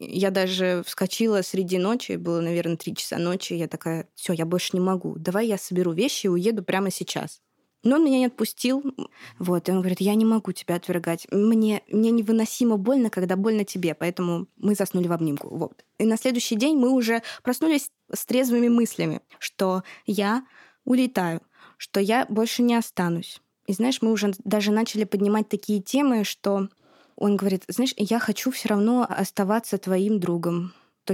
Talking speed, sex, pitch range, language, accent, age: 175 wpm, female, 180-225 Hz, Russian, native, 20-39